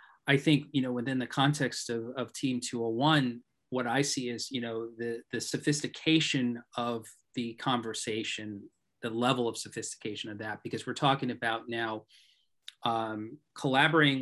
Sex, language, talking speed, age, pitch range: male, English, 150 wpm, 30-49, 115-140 Hz